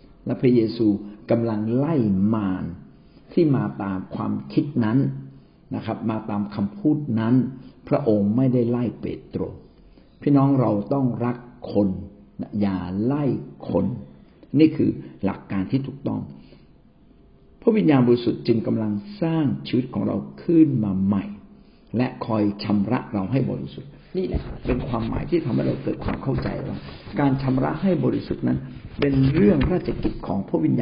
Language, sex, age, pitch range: Thai, male, 60-79, 105-135 Hz